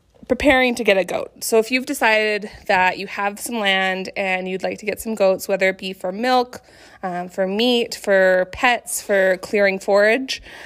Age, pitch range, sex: 20-39, 195-245 Hz, female